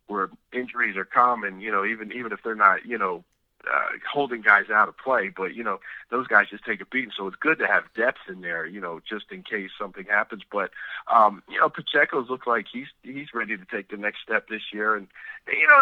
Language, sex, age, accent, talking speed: English, male, 50-69, American, 240 wpm